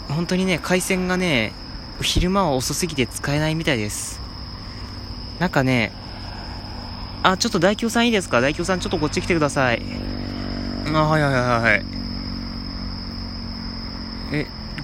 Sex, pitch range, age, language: male, 115-185 Hz, 20-39, Japanese